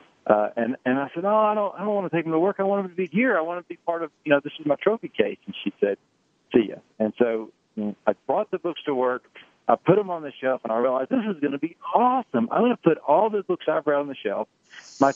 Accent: American